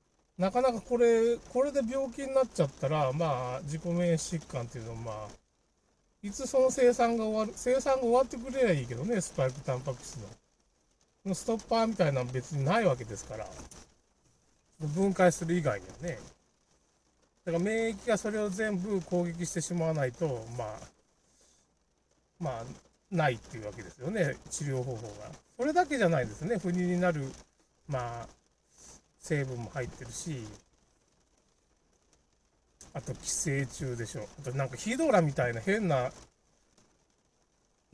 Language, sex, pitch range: Japanese, male, 120-190 Hz